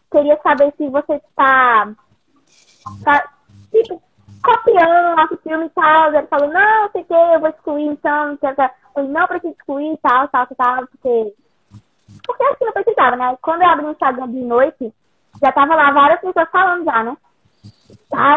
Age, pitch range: 20-39, 260-320 Hz